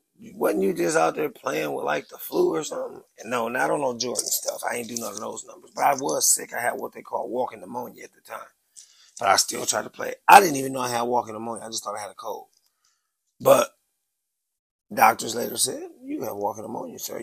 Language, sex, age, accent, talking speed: English, male, 30-49, American, 245 wpm